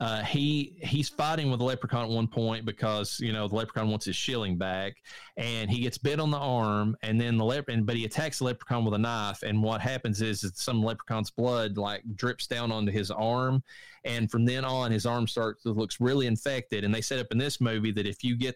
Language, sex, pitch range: English, male, 105-120 Hz